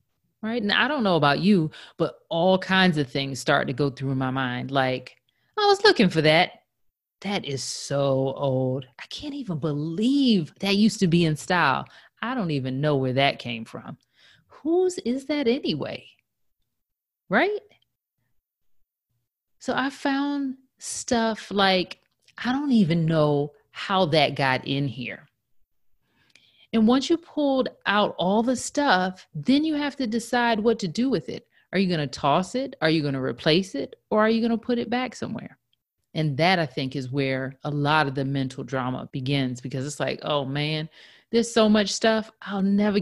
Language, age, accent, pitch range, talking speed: English, 30-49, American, 140-230 Hz, 180 wpm